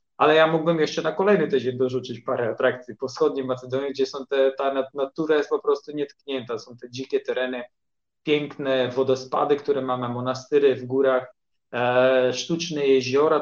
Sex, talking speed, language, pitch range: male, 160 wpm, Polish, 130-160 Hz